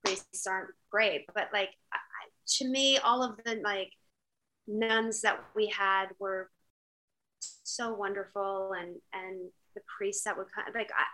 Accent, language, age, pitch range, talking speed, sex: American, English, 30-49, 190-255 Hz, 155 wpm, female